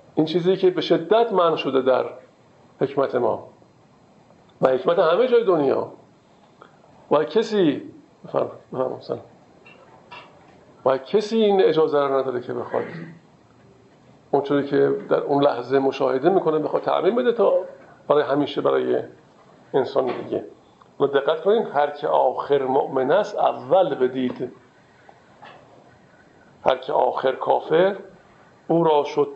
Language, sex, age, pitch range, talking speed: Persian, male, 50-69, 145-180 Hz, 125 wpm